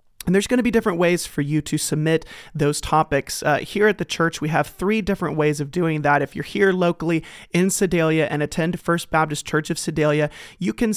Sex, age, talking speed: male, 30-49, 225 wpm